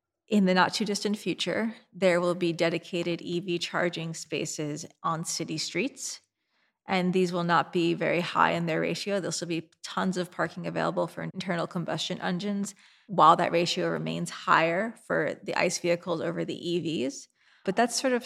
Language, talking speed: English, 170 wpm